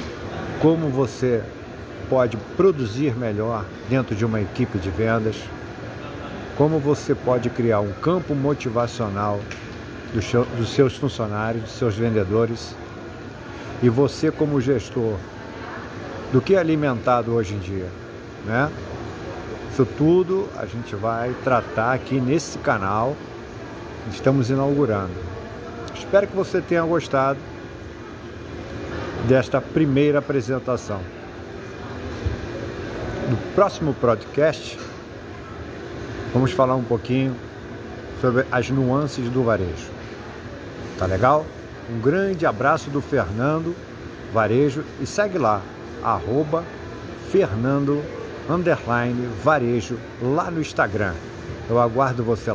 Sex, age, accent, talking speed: male, 50-69, Brazilian, 100 wpm